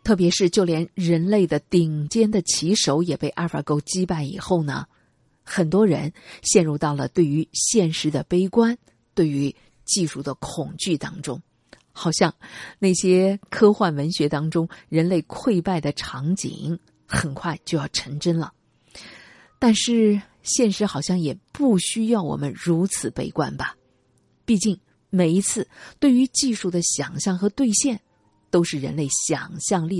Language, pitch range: Chinese, 155-215 Hz